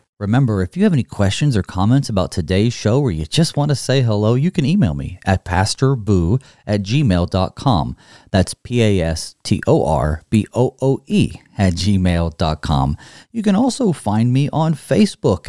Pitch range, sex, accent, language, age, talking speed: 100-140 Hz, male, American, English, 40-59, 145 wpm